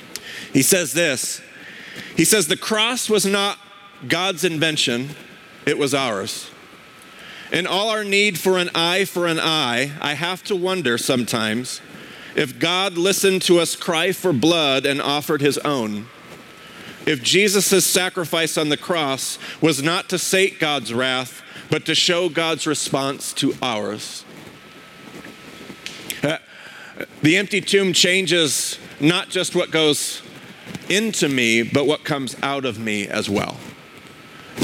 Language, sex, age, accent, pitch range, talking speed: English, male, 40-59, American, 145-195 Hz, 135 wpm